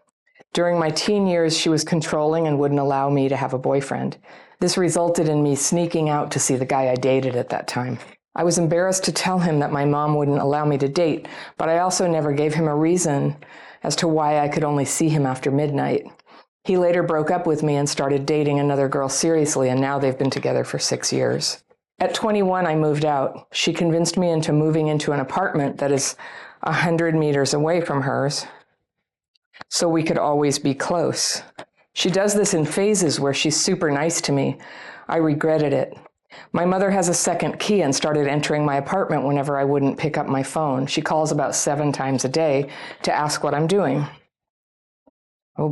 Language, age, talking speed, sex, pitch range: English, 50-69, 200 wpm, female, 140-170 Hz